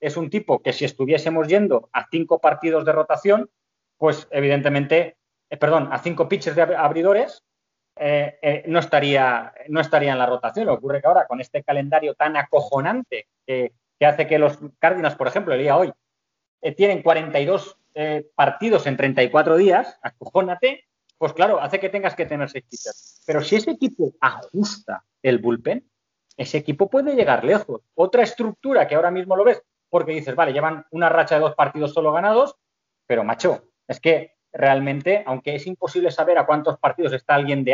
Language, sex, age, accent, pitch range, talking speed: Spanish, male, 30-49, Spanish, 140-170 Hz, 180 wpm